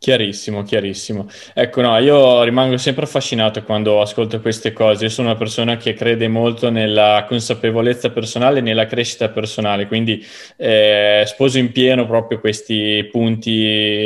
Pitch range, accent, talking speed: 110-125 Hz, native, 145 wpm